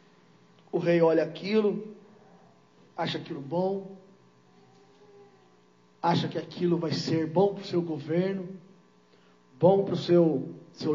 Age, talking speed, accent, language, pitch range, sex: 40-59, 115 wpm, Brazilian, Portuguese, 135-205 Hz, male